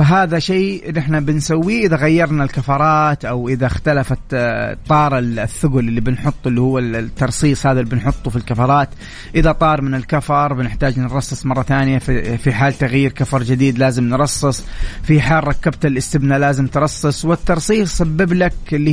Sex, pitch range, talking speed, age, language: male, 130-170 Hz, 150 wpm, 30-49, English